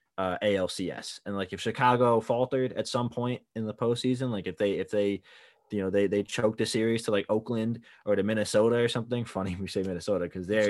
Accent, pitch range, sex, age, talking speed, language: American, 100-125 Hz, male, 20-39, 220 wpm, English